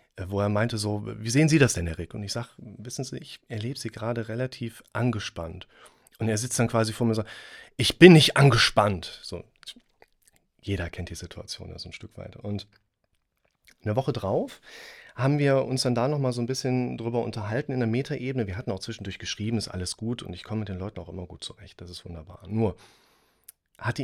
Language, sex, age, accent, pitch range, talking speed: German, male, 30-49, German, 105-125 Hz, 215 wpm